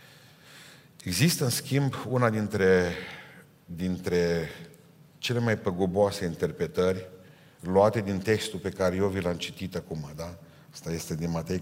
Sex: male